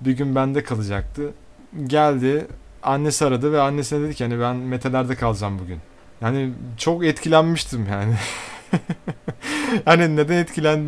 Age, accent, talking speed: 30-49, native, 120 wpm